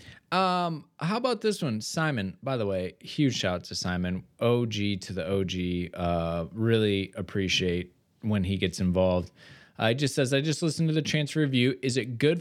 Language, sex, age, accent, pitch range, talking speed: English, male, 20-39, American, 110-150 Hz, 185 wpm